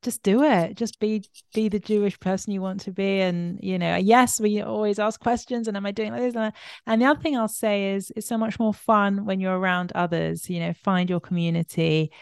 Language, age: English, 30-49